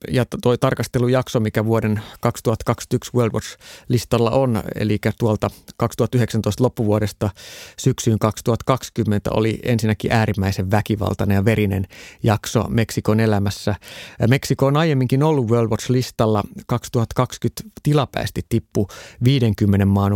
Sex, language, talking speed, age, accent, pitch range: male, Finnish, 110 wpm, 30-49, native, 105-130 Hz